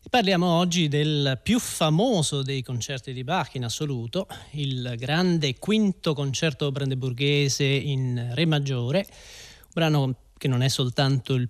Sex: male